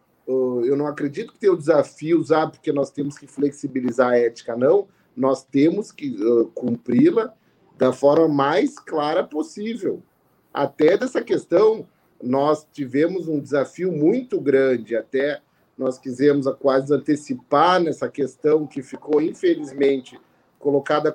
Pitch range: 145-205 Hz